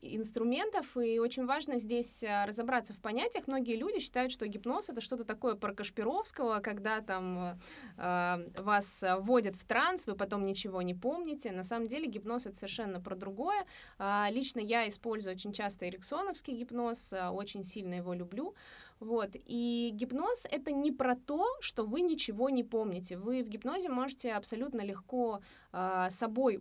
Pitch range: 205-255 Hz